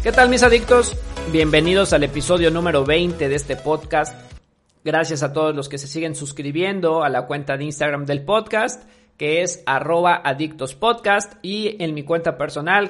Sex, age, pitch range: male, 40-59, 155-200 Hz